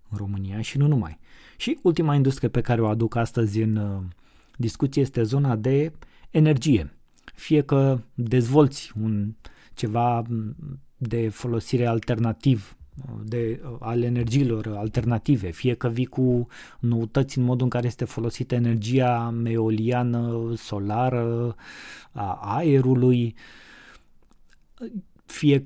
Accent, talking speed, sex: native, 115 wpm, male